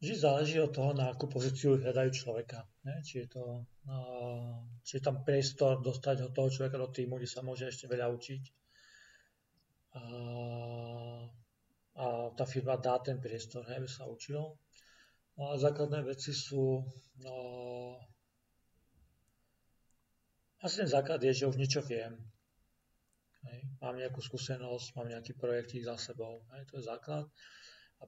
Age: 40-59